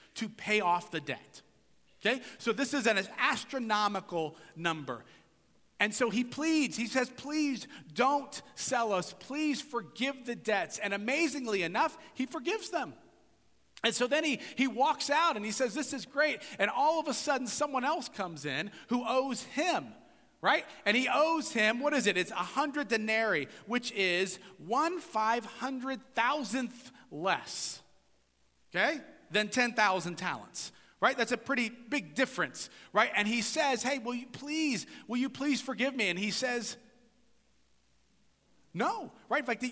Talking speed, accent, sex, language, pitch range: 155 wpm, American, male, English, 210-285 Hz